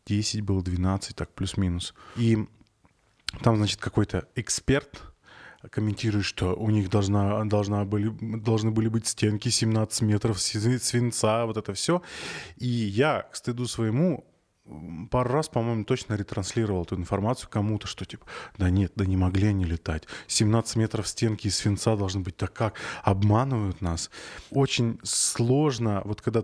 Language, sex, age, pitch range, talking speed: Russian, male, 20-39, 105-125 Hz, 150 wpm